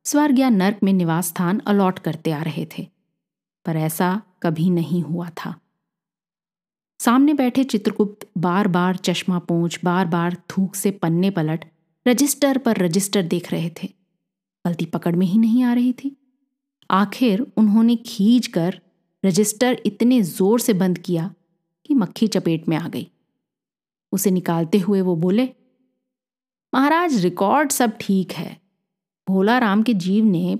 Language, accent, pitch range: Hindi, native, 180-230 Hz